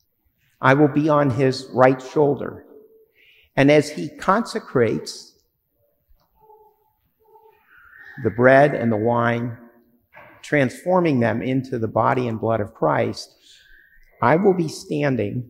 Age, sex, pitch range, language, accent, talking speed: 50-69, male, 120-165 Hz, English, American, 110 wpm